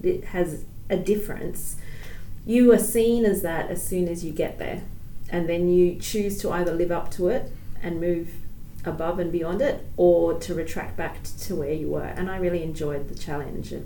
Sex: female